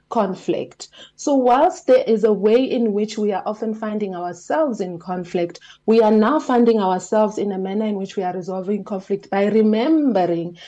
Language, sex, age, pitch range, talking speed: English, female, 30-49, 185-220 Hz, 180 wpm